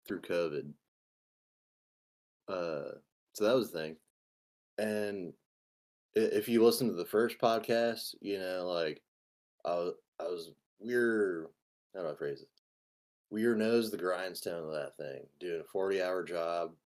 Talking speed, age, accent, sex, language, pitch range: 155 wpm, 20-39, American, male, English, 85-115 Hz